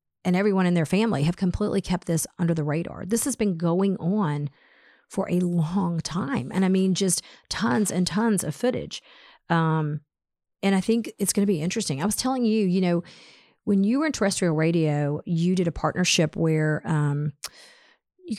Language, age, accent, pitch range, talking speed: English, 40-59, American, 155-190 Hz, 185 wpm